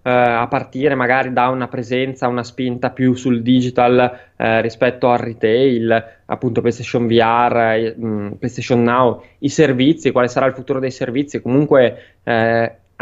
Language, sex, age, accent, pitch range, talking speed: Italian, male, 20-39, native, 115-135 Hz, 140 wpm